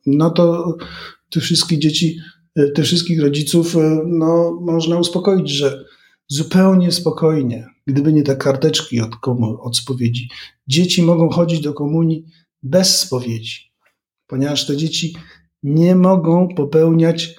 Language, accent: Polish, native